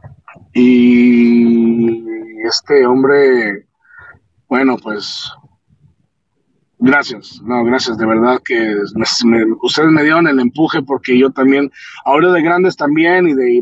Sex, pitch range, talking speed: male, 115-150 Hz, 125 wpm